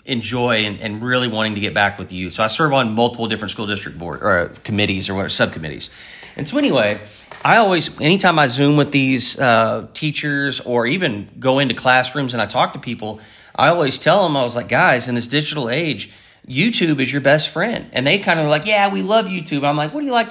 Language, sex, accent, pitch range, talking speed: English, male, American, 120-155 Hz, 230 wpm